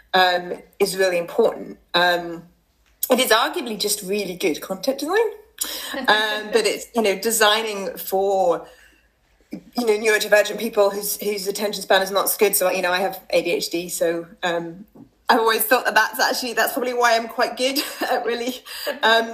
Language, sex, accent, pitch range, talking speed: English, female, British, 190-260 Hz, 190 wpm